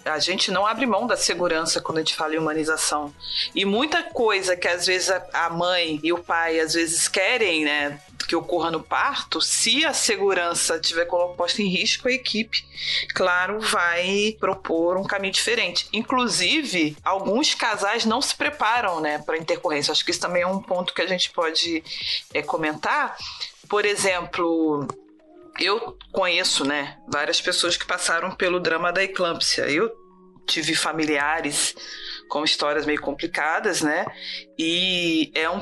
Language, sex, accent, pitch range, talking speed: Portuguese, female, Brazilian, 155-195 Hz, 155 wpm